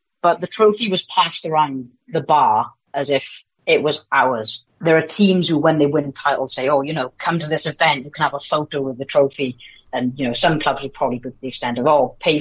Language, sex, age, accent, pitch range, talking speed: English, female, 30-49, British, 130-160 Hz, 245 wpm